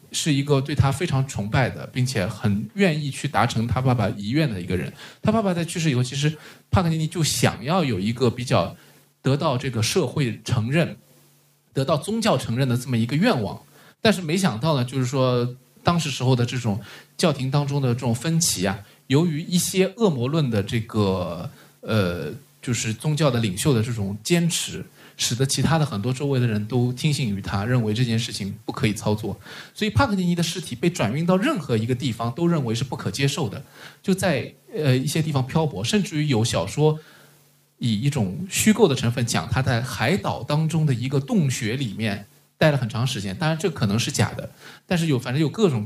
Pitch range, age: 115-160 Hz, 20-39